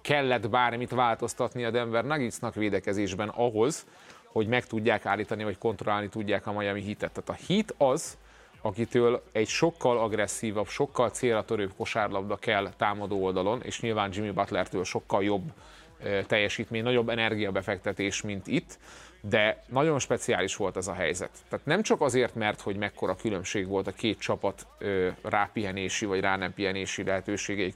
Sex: male